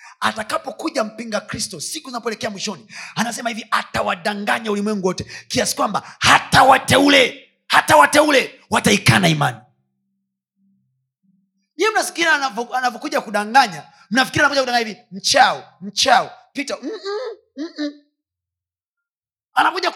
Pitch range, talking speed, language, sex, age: 195-300 Hz, 95 wpm, Swahili, male, 30-49